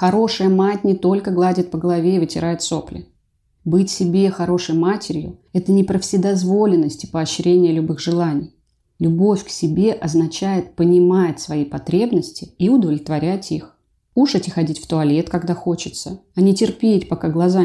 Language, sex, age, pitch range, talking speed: Russian, female, 30-49, 165-195 Hz, 155 wpm